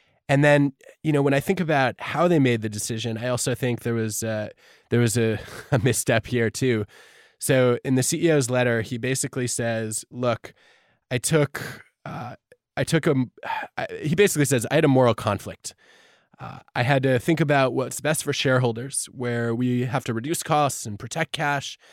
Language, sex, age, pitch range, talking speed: English, male, 20-39, 115-140 Hz, 185 wpm